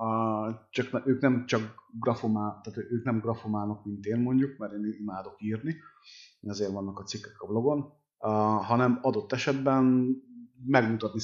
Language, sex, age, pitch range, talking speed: Hungarian, male, 30-49, 100-125 Hz, 150 wpm